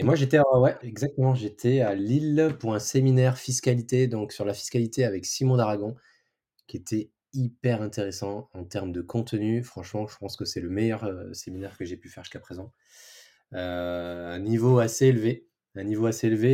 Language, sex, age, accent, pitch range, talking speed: French, male, 20-39, French, 95-120 Hz, 180 wpm